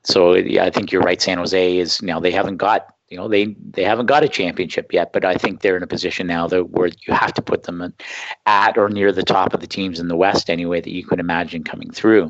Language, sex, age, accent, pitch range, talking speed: English, male, 50-69, American, 100-140 Hz, 275 wpm